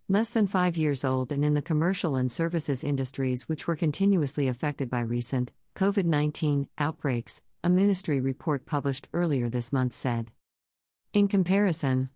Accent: American